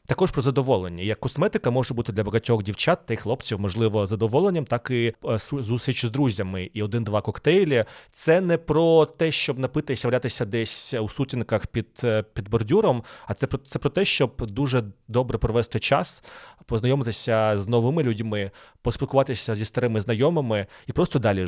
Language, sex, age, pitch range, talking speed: Ukrainian, male, 30-49, 110-135 Hz, 160 wpm